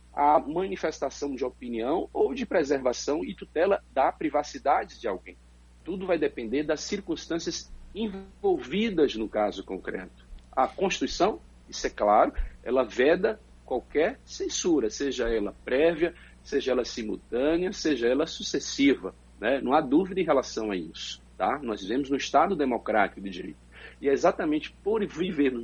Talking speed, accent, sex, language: 145 wpm, Brazilian, male, Portuguese